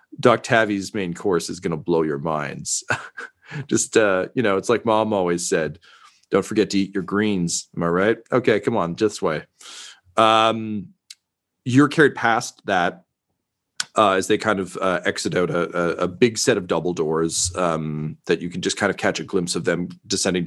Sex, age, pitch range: male, 40-59, 85-105 Hz